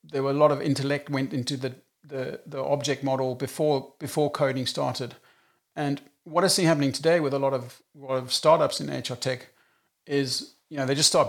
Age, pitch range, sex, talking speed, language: 40-59, 130-150 Hz, male, 215 wpm, English